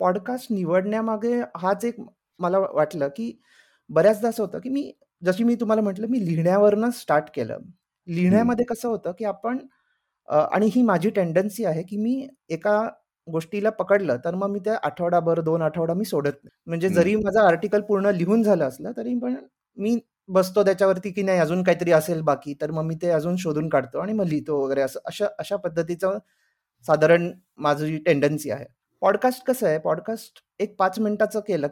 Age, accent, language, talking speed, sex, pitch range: 30-49, native, Marathi, 170 wpm, male, 165-220 Hz